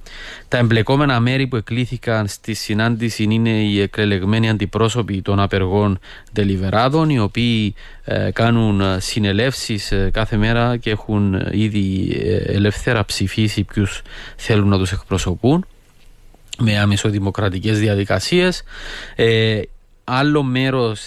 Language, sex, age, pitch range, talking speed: Greek, male, 30-49, 100-125 Hz, 95 wpm